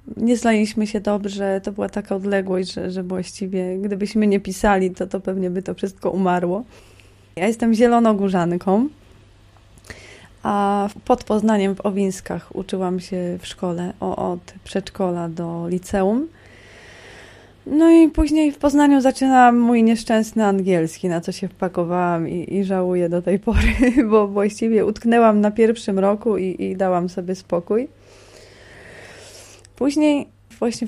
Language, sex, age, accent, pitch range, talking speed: Polish, female, 20-39, native, 185-225 Hz, 135 wpm